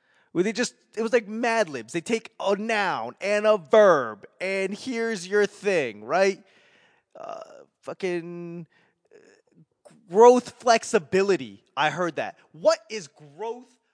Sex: male